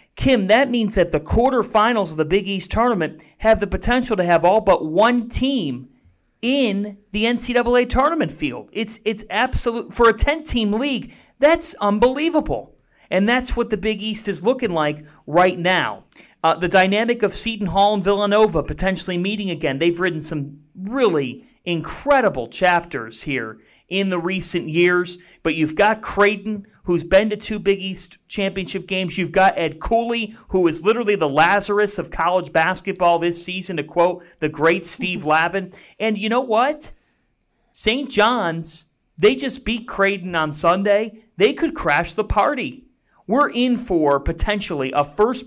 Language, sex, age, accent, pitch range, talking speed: English, male, 40-59, American, 170-220 Hz, 160 wpm